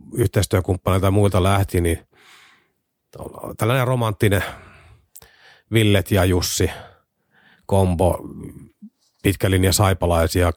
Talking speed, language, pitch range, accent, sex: 75 wpm, Finnish, 90-110 Hz, native, male